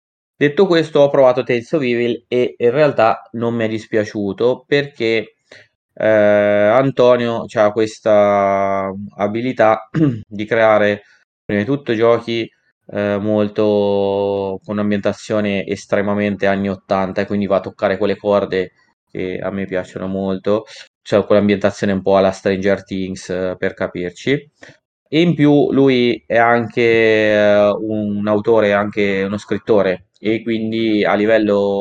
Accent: native